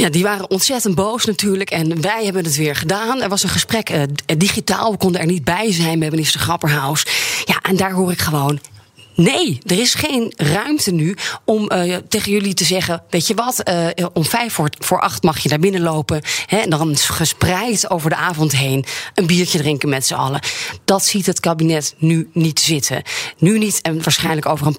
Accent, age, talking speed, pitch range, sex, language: Dutch, 30-49, 210 wpm, 160-205 Hz, female, Dutch